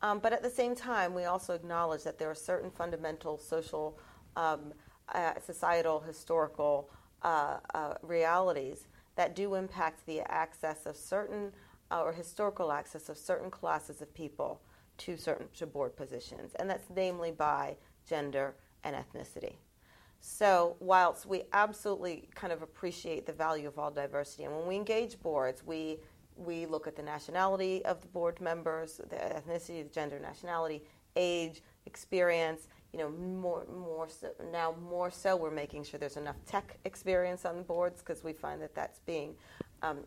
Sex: female